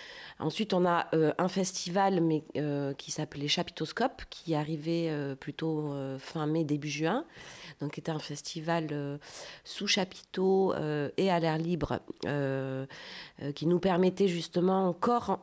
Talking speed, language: 150 wpm, French